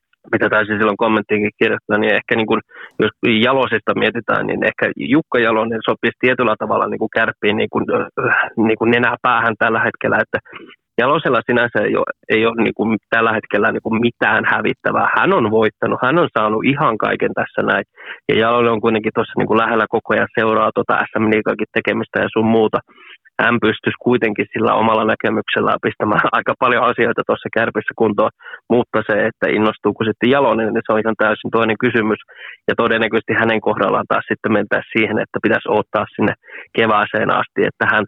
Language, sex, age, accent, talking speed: Finnish, male, 20-39, native, 170 wpm